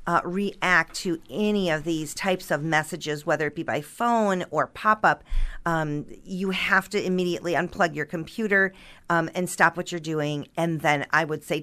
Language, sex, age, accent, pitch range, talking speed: English, female, 40-59, American, 155-190 Hz, 175 wpm